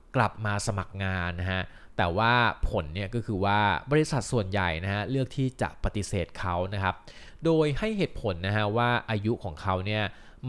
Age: 20-39